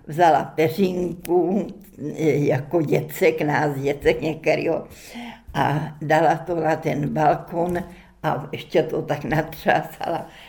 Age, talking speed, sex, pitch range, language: 60-79, 105 wpm, female, 160-190 Hz, Czech